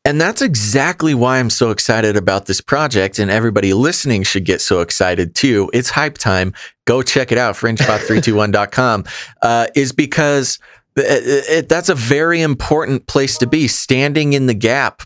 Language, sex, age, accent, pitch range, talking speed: English, male, 30-49, American, 100-130 Hz, 155 wpm